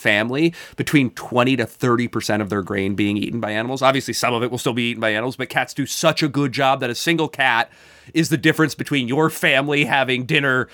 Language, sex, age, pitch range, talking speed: English, male, 30-49, 120-185 Hz, 230 wpm